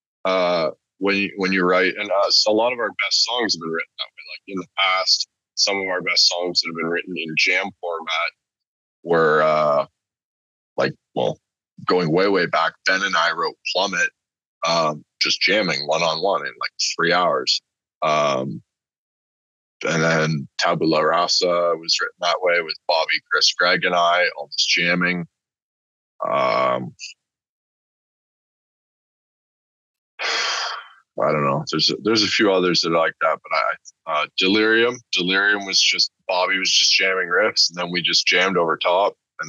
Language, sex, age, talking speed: English, male, 20-39, 165 wpm